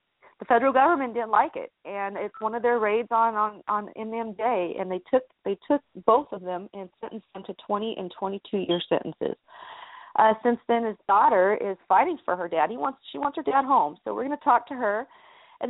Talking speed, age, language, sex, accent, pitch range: 225 wpm, 40-59, English, female, American, 195-255 Hz